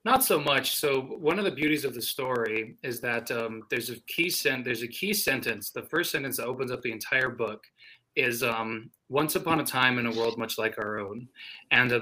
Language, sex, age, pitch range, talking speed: English, male, 20-39, 115-160 Hz, 230 wpm